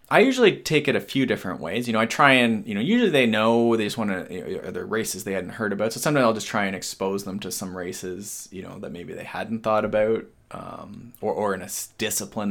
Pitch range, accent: 100-125 Hz, American